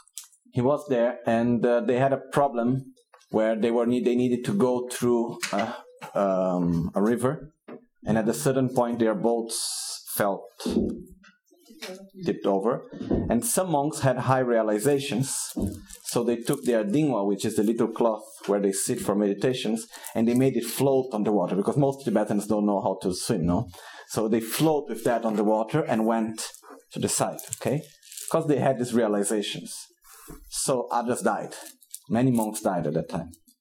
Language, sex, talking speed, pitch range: Italian, male, 175 wpm, 115-155 Hz